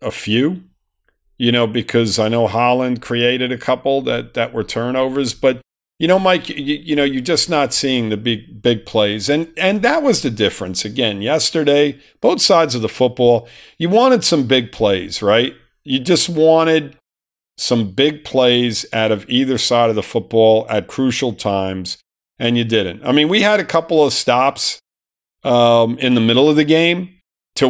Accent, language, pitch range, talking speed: American, English, 110-135 Hz, 180 wpm